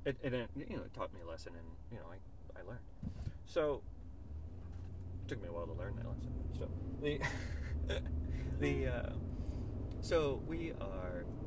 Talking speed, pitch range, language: 165 wpm, 80-100 Hz, English